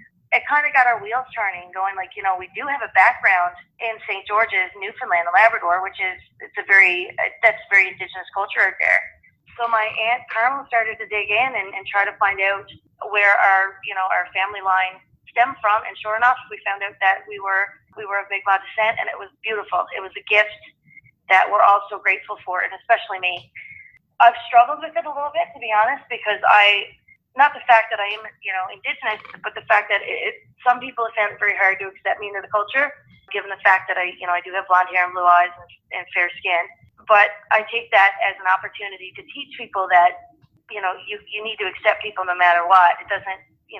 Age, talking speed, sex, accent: 30-49, 230 wpm, female, American